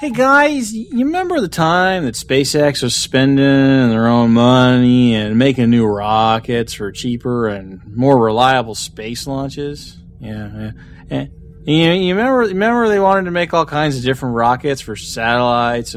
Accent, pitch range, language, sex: American, 110-160 Hz, English, male